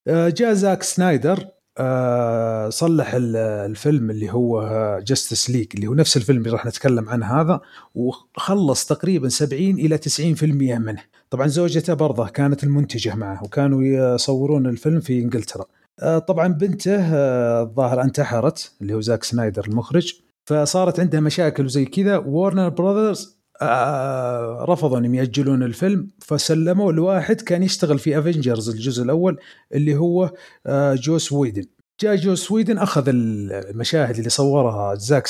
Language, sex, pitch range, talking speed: Arabic, male, 120-165 Hz, 125 wpm